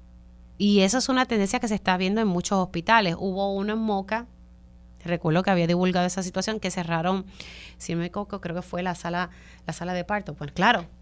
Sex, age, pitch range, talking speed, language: female, 30-49, 160-210 Hz, 210 wpm, Spanish